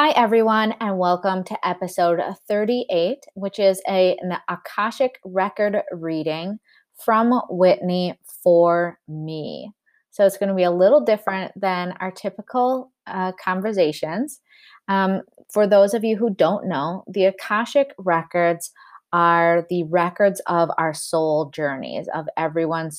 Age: 20-39